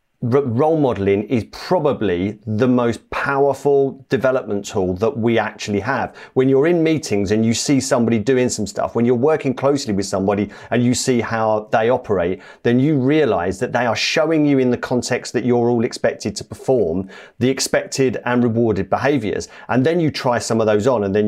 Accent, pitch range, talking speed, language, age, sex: British, 110-135 Hz, 190 wpm, English, 40-59, male